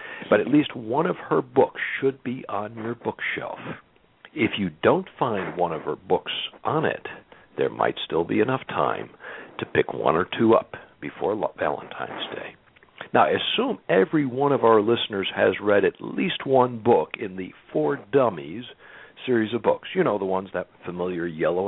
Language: English